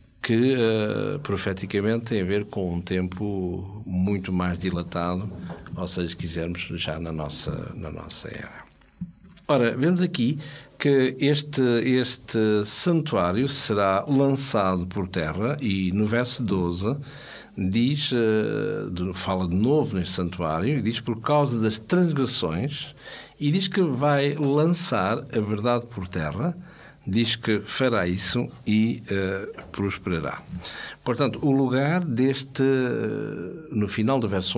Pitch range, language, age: 95-135 Hz, Portuguese, 60-79